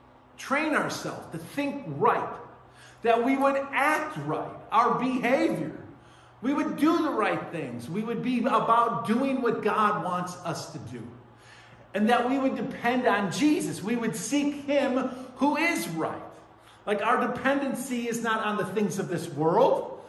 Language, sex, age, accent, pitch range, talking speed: English, male, 50-69, American, 195-265 Hz, 160 wpm